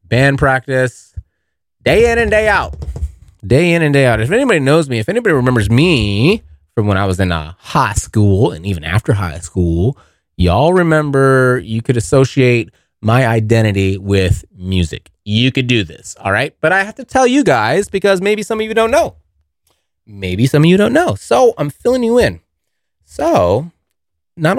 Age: 30-49